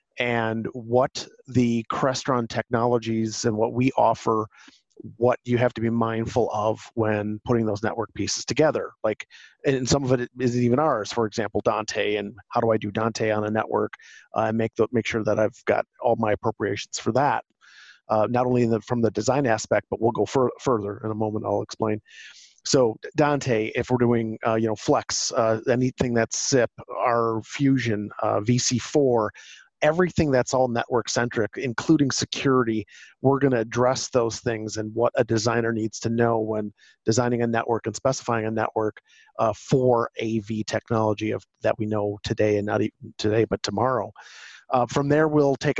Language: English